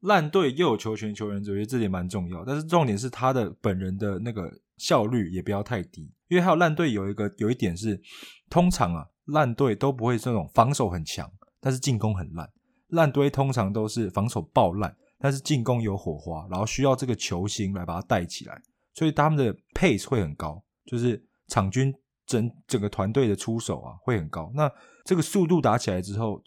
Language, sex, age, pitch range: English, male, 20-39, 95-130 Hz